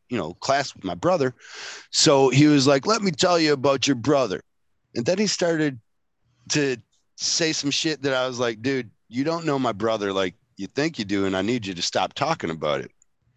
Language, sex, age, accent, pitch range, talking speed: English, male, 40-59, American, 110-145 Hz, 220 wpm